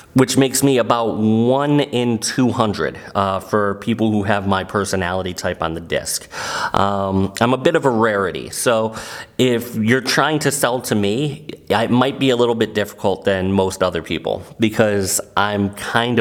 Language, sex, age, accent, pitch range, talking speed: English, male, 30-49, American, 100-120 Hz, 175 wpm